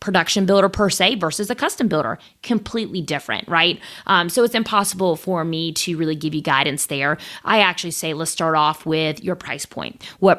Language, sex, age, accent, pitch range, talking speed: English, female, 20-39, American, 150-185 Hz, 195 wpm